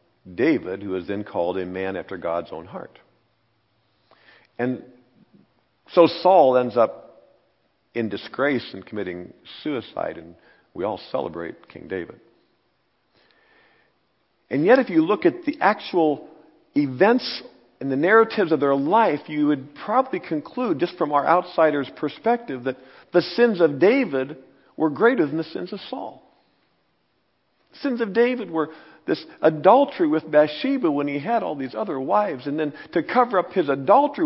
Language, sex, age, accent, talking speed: English, male, 50-69, American, 150 wpm